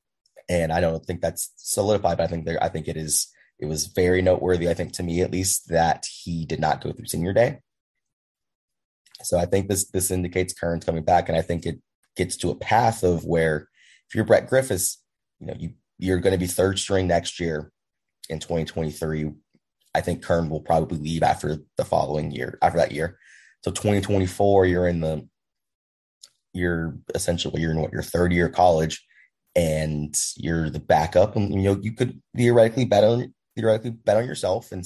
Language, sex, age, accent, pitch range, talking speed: English, male, 20-39, American, 80-95 Hz, 190 wpm